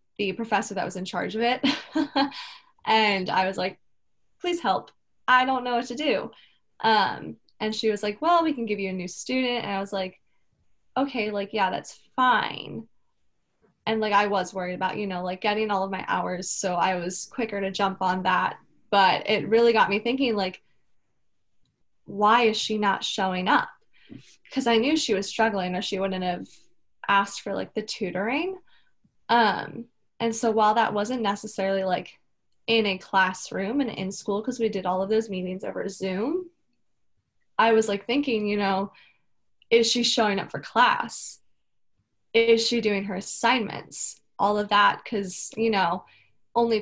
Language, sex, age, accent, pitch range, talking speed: English, female, 10-29, American, 195-235 Hz, 175 wpm